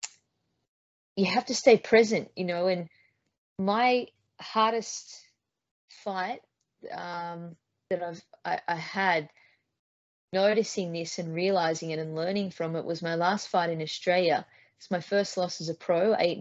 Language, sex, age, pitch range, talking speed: English, female, 20-39, 165-195 Hz, 145 wpm